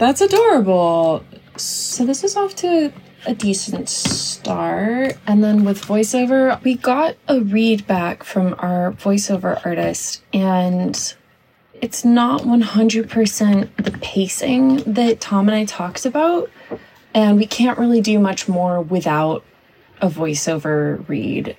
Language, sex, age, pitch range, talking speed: English, female, 20-39, 170-245 Hz, 130 wpm